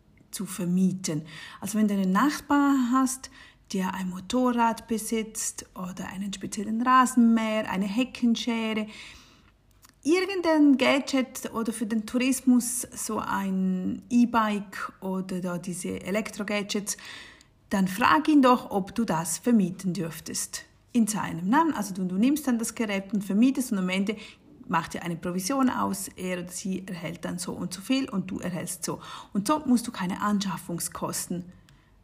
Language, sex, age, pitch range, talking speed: German, female, 40-59, 190-245 Hz, 150 wpm